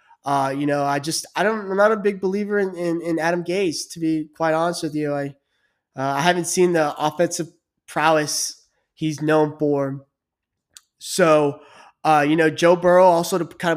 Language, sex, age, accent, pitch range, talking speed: English, male, 20-39, American, 150-175 Hz, 185 wpm